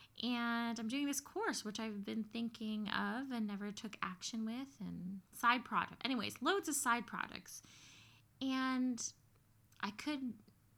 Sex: female